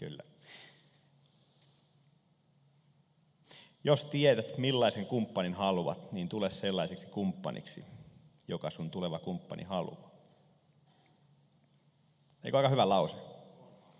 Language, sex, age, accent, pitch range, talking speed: Finnish, male, 30-49, native, 105-150 Hz, 80 wpm